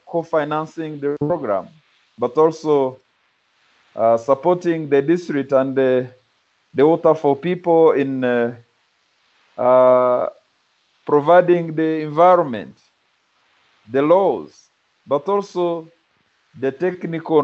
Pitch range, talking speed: 125-165 Hz, 95 wpm